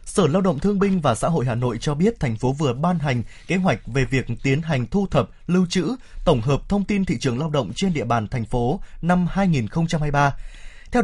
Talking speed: 235 wpm